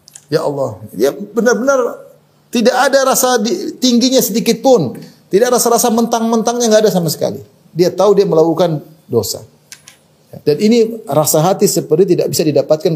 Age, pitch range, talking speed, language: 30-49, 130-195 Hz, 145 wpm, Indonesian